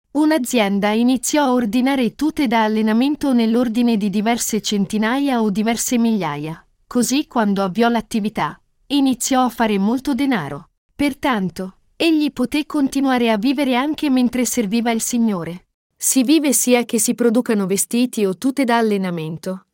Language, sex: Italian, female